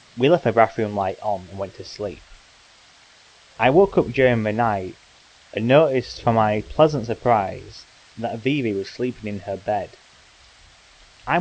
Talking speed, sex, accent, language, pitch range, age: 160 wpm, male, British, English, 95-125 Hz, 20-39